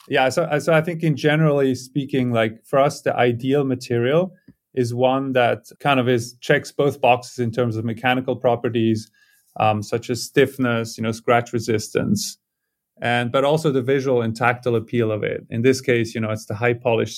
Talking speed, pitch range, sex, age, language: 190 wpm, 115-135 Hz, male, 30-49, English